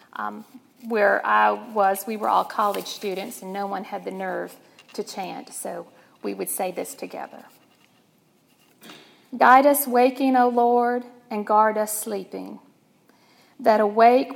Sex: female